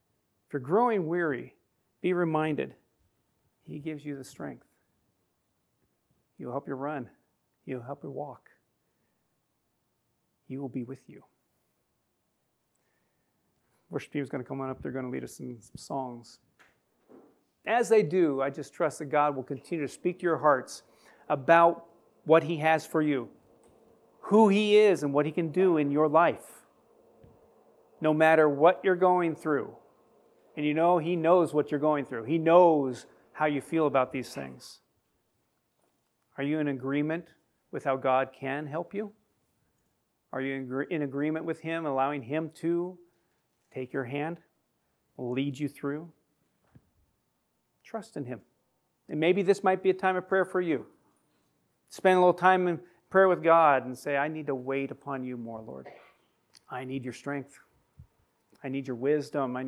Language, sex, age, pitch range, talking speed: English, male, 40-59, 135-170 Hz, 165 wpm